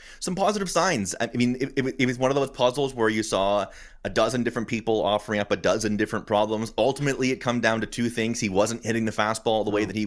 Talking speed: 245 wpm